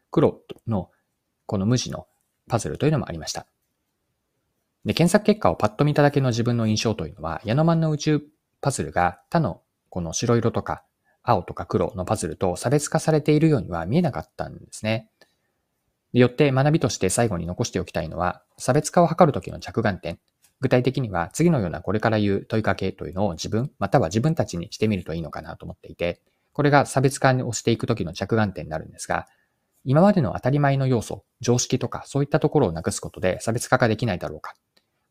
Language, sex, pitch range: Japanese, male, 90-135 Hz